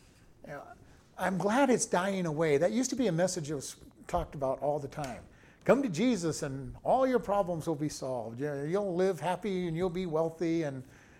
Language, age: English, 50-69